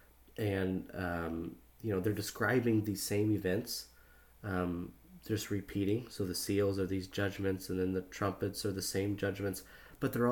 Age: 30-49